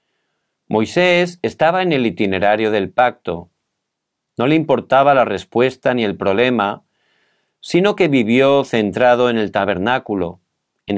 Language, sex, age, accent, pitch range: Korean, male, 40-59, Spanish, 110-145 Hz